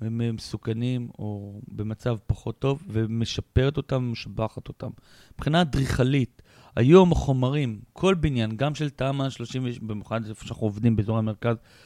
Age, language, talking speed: 40-59, Hebrew, 135 wpm